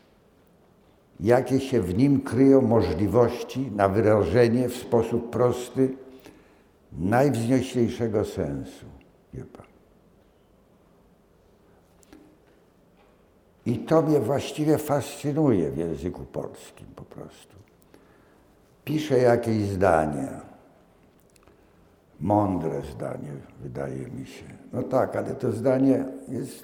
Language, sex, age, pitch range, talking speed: Polish, male, 60-79, 105-135 Hz, 85 wpm